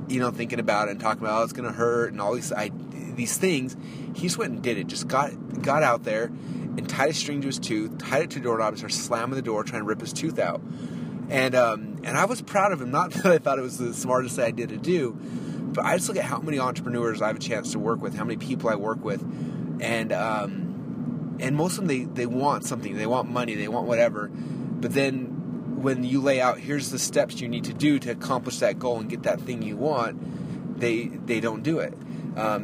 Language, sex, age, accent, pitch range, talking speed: English, male, 30-49, American, 120-145 Hz, 250 wpm